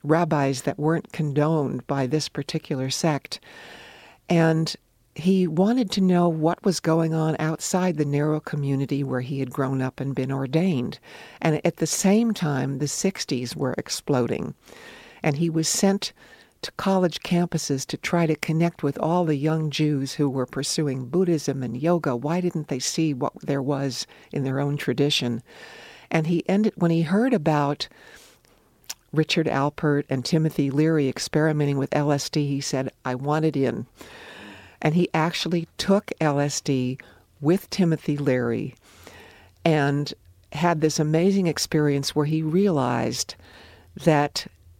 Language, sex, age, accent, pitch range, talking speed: English, female, 60-79, American, 140-165 Hz, 145 wpm